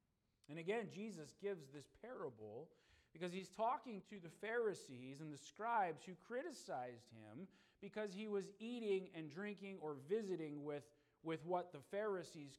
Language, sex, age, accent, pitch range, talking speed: English, male, 40-59, American, 145-200 Hz, 150 wpm